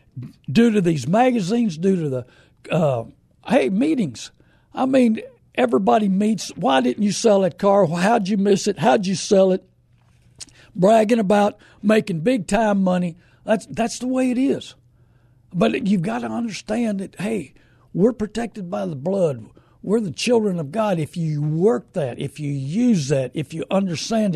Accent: American